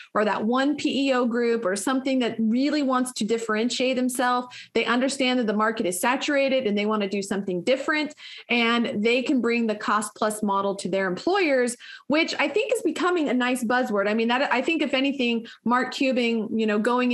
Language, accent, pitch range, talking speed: English, American, 215-260 Hz, 205 wpm